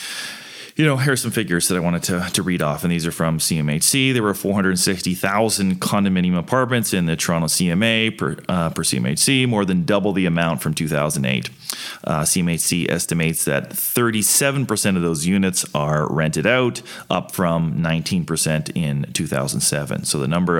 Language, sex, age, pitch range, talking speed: English, male, 30-49, 85-110 Hz, 165 wpm